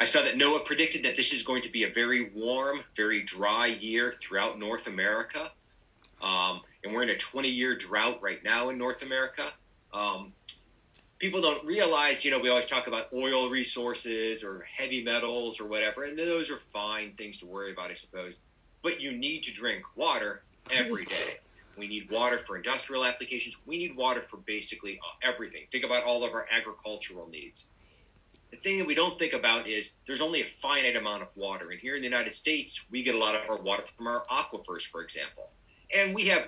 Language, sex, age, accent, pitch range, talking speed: English, male, 30-49, American, 105-140 Hz, 200 wpm